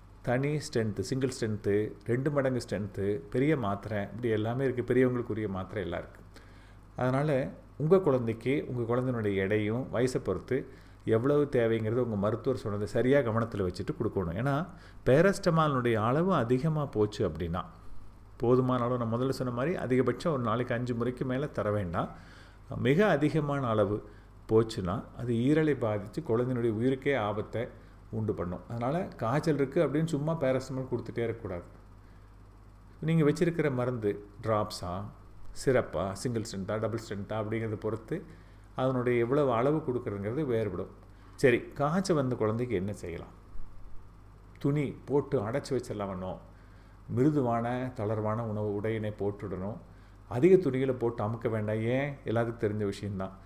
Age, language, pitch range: 40-59, Tamil, 100-130 Hz